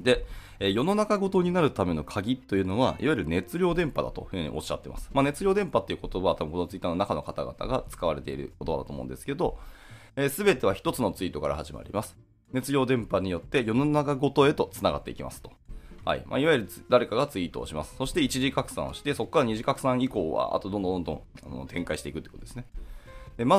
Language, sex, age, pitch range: Japanese, male, 20-39, 95-140 Hz